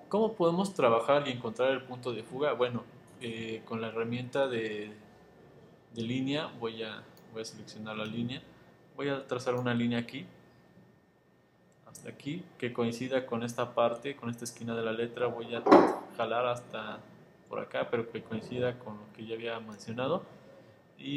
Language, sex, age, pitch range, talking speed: Spanish, male, 20-39, 115-130 Hz, 165 wpm